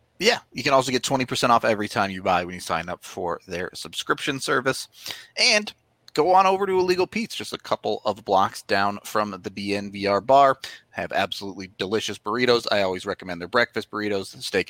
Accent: American